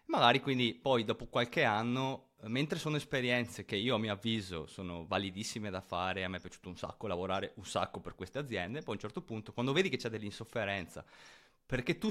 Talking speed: 210 wpm